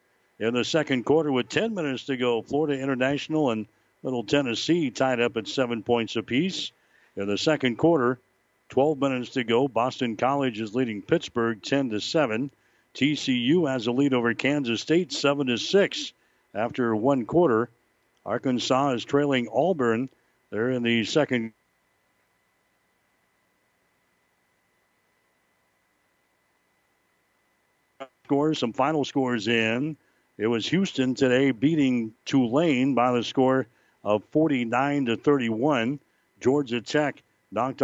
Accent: American